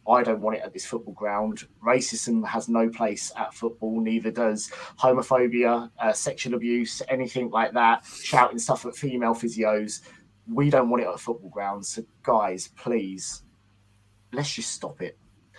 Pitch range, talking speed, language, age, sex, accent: 105-125 Hz, 165 wpm, English, 20-39, male, British